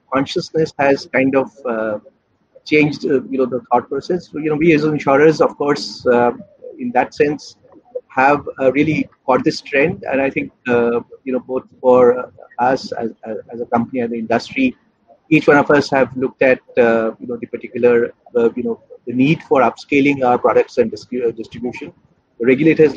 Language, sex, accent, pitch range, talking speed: English, male, Indian, 125-155 Hz, 185 wpm